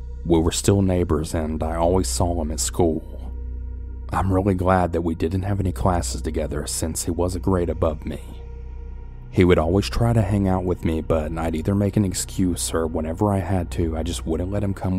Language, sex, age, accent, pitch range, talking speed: English, male, 30-49, American, 75-90 Hz, 215 wpm